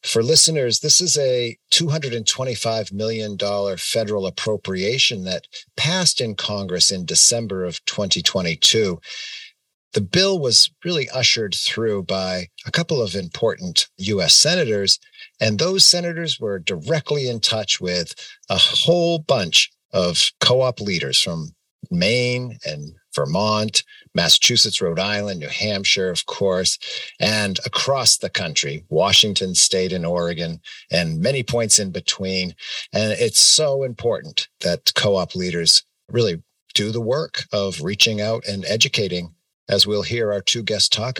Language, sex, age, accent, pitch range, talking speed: English, male, 50-69, American, 95-135 Hz, 135 wpm